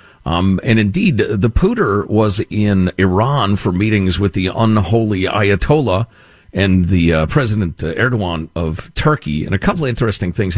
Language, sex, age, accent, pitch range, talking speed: English, male, 50-69, American, 100-150 Hz, 155 wpm